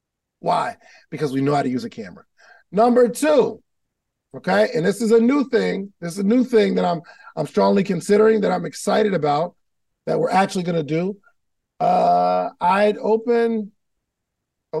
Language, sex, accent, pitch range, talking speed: English, male, American, 160-230 Hz, 170 wpm